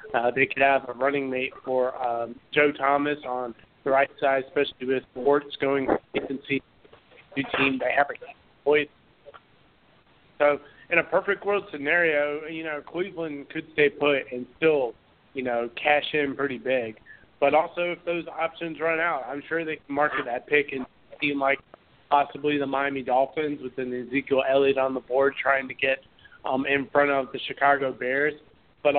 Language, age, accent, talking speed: English, 30-49, American, 175 wpm